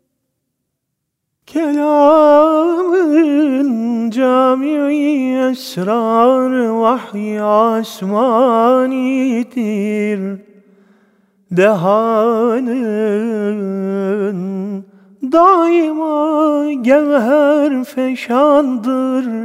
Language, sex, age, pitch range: Turkish, male, 40-59, 230-290 Hz